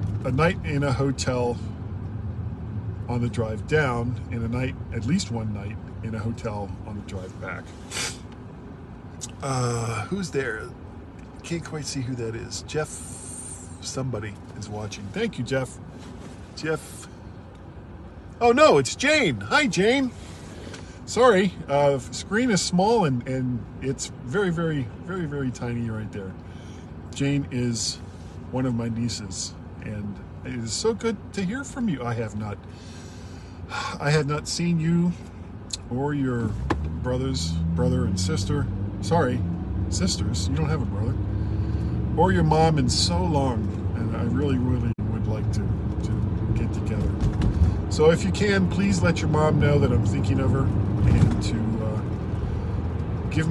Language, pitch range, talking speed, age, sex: English, 95-130 Hz, 145 wpm, 40-59, male